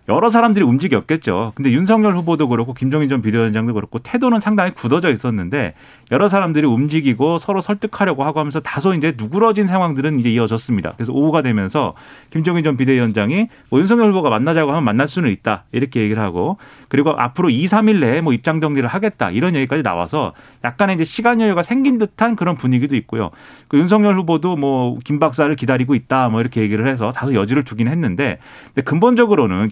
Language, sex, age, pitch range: Korean, male, 30-49, 125-200 Hz